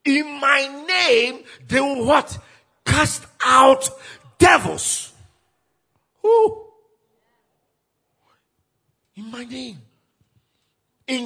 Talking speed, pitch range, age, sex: 75 wpm, 135-185 Hz, 50-69, male